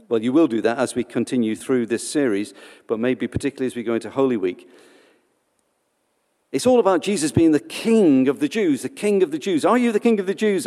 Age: 50-69